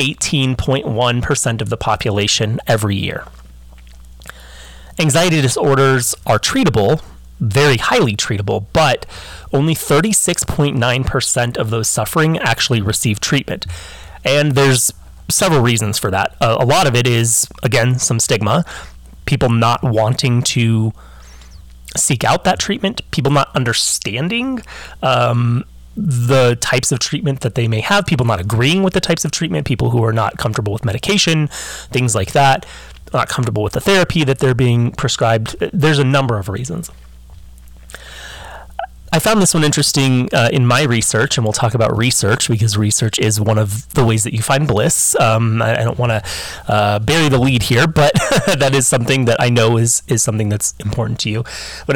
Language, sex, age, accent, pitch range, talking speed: English, male, 30-49, American, 105-140 Hz, 160 wpm